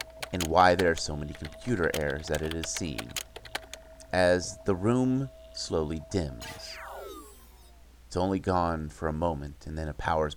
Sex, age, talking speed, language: male, 30-49, 155 wpm, English